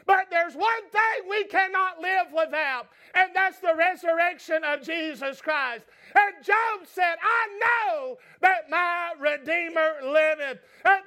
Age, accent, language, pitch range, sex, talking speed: 50-69, American, English, 320-375 Hz, male, 135 wpm